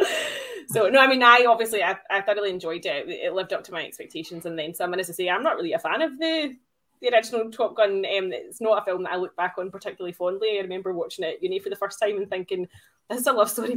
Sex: female